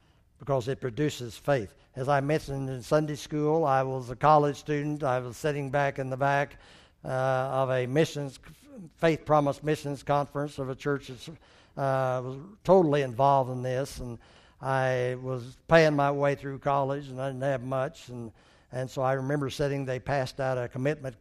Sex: male